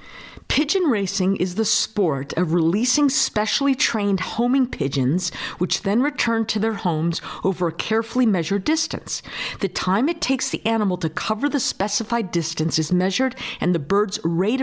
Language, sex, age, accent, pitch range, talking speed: English, female, 50-69, American, 175-235 Hz, 160 wpm